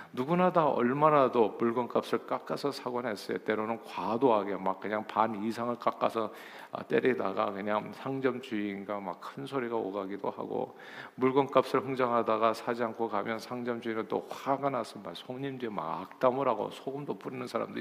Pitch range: 115-160 Hz